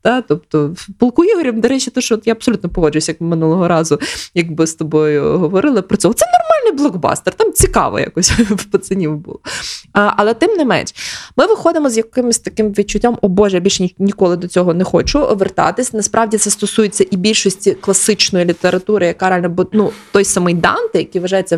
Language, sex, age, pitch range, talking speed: Ukrainian, female, 20-39, 185-240 Hz, 185 wpm